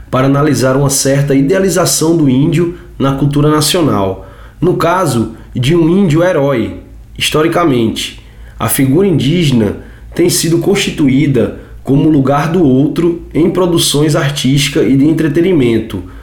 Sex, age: male, 20-39